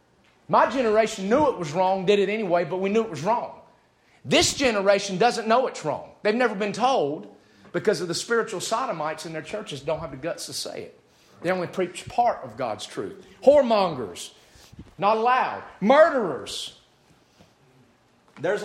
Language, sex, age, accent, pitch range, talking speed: English, male, 40-59, American, 180-245 Hz, 165 wpm